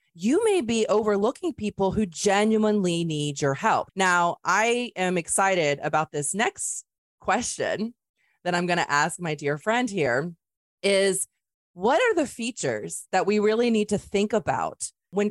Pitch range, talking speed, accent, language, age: 170-230 Hz, 155 wpm, American, English, 30-49